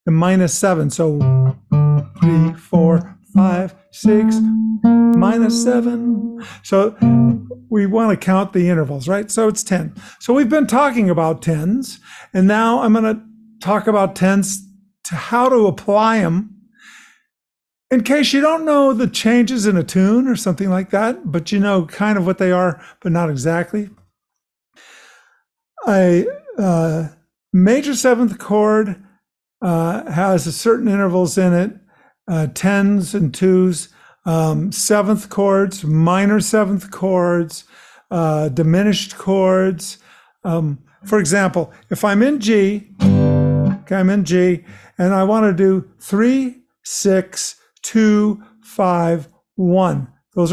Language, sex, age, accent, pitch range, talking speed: English, male, 50-69, American, 175-215 Hz, 130 wpm